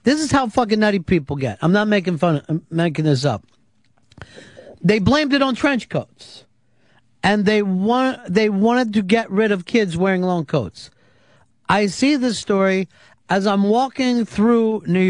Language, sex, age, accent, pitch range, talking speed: English, male, 50-69, American, 155-225 Hz, 170 wpm